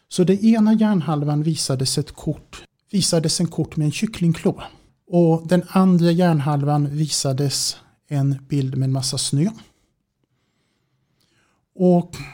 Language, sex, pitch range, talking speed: English, male, 140-180 Hz, 110 wpm